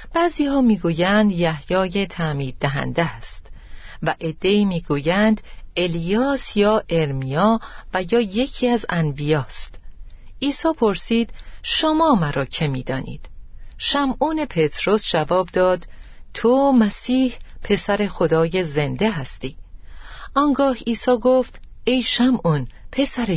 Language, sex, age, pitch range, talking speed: Persian, female, 40-59, 150-235 Hz, 100 wpm